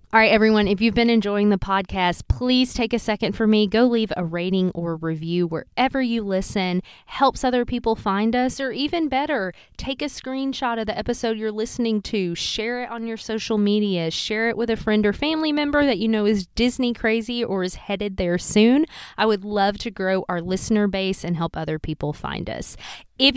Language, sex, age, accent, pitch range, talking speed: English, female, 30-49, American, 185-240 Hz, 210 wpm